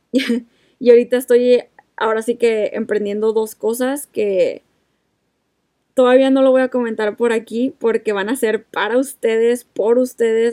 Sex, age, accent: female, 20-39, Mexican